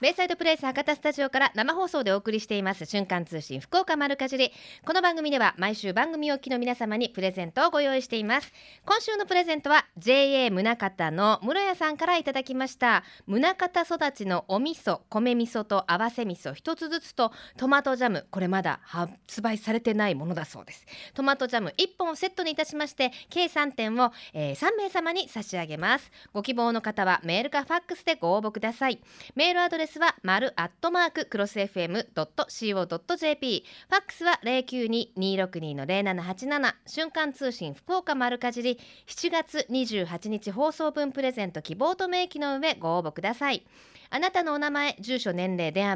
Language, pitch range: Japanese, 195-300 Hz